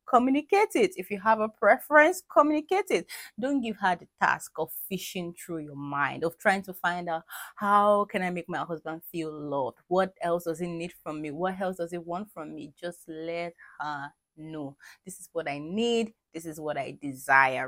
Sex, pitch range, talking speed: female, 170-225 Hz, 205 wpm